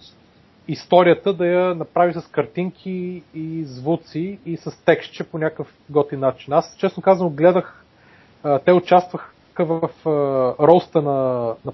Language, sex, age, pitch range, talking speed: Bulgarian, male, 30-49, 135-170 Hz, 125 wpm